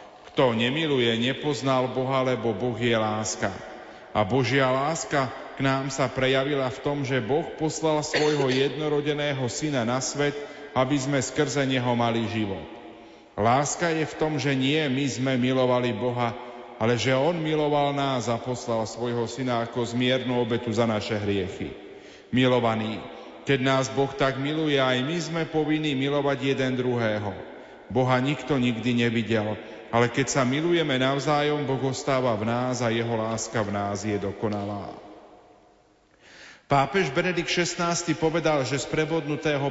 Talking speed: 145 wpm